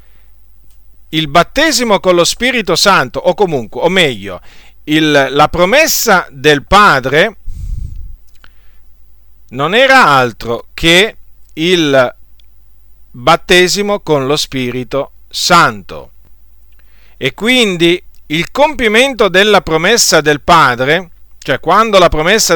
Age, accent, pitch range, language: 50-69, native, 120-190 Hz, Italian